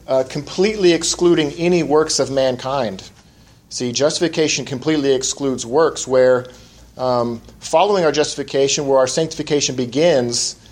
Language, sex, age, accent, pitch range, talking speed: English, male, 40-59, American, 125-155 Hz, 120 wpm